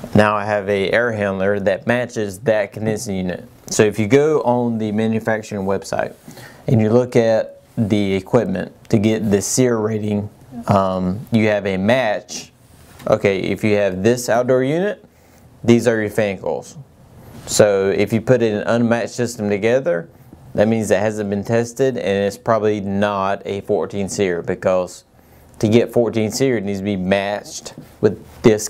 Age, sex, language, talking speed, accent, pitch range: 30-49, male, English, 170 wpm, American, 100-115 Hz